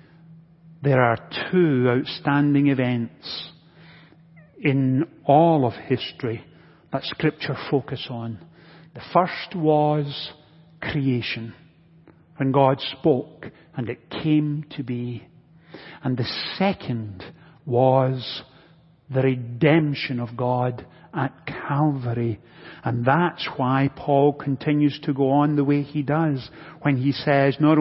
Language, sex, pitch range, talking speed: English, male, 135-165 Hz, 110 wpm